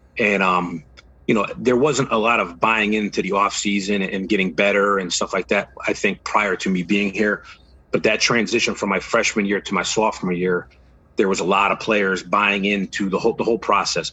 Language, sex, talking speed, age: English, male, 220 wpm, 30-49